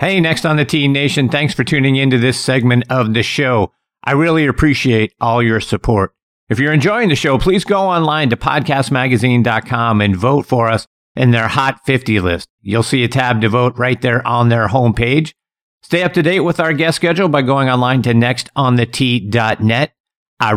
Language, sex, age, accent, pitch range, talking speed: English, male, 50-69, American, 120-160 Hz, 195 wpm